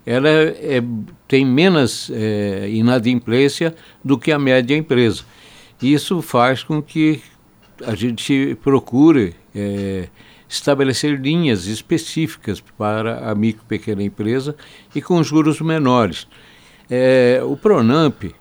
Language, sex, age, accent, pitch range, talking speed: Portuguese, male, 60-79, Brazilian, 105-150 Hz, 100 wpm